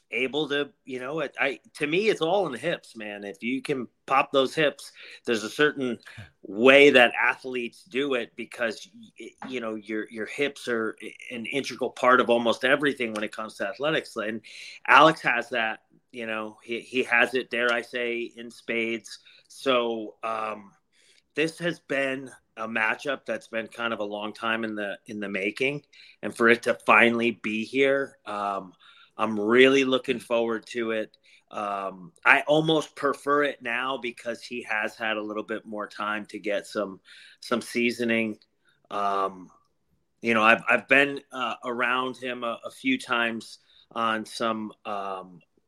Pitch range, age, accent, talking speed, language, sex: 105-130 Hz, 30-49, American, 170 wpm, English, male